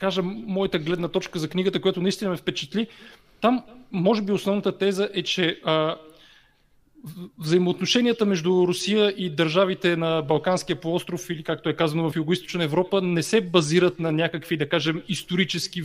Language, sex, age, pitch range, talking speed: Bulgarian, male, 30-49, 155-185 Hz, 155 wpm